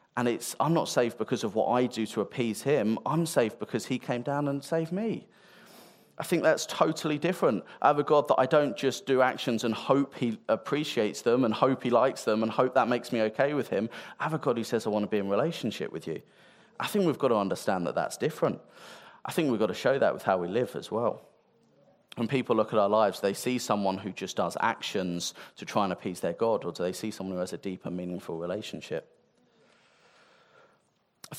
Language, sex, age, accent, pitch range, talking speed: English, male, 30-49, British, 105-125 Hz, 235 wpm